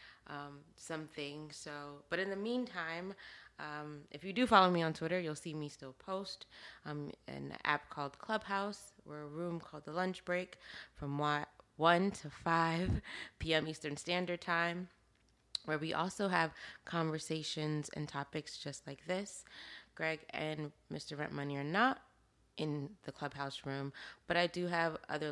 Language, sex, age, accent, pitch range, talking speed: English, female, 20-39, American, 145-175 Hz, 160 wpm